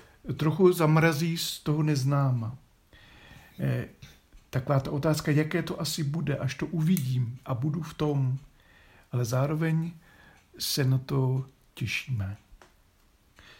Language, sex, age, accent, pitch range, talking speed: Czech, male, 50-69, native, 130-165 Hz, 110 wpm